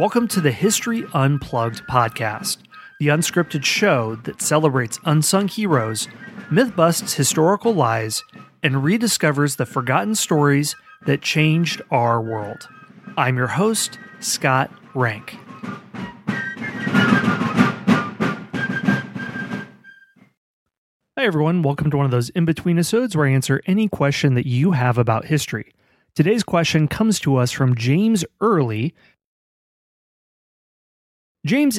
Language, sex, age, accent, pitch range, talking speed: English, male, 30-49, American, 125-175 Hz, 110 wpm